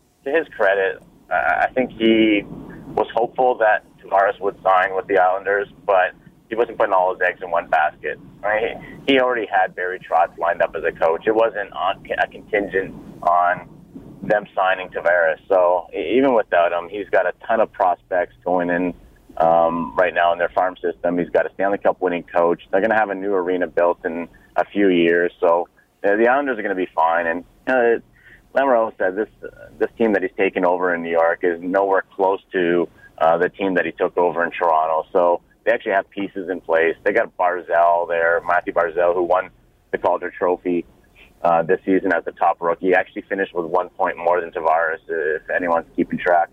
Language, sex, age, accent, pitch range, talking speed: English, male, 30-49, American, 85-100 Hz, 200 wpm